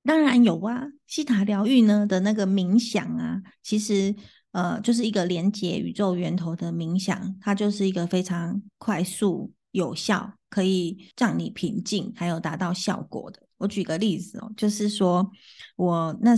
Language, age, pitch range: Chinese, 20-39, 180-215 Hz